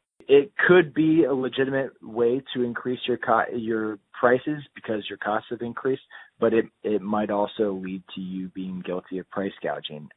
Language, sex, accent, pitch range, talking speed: English, male, American, 100-120 Hz, 175 wpm